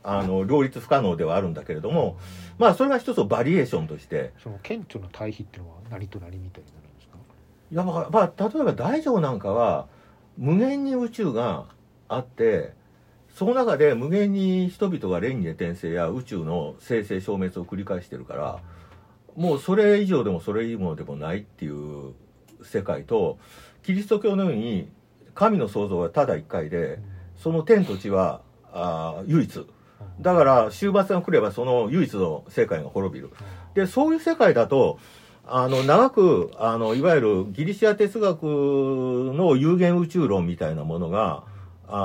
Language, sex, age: Japanese, male, 50-69